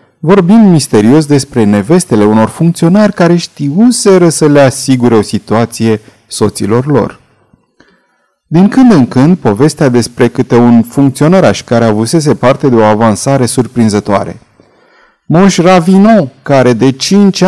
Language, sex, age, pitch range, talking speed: Romanian, male, 30-49, 120-185 Hz, 125 wpm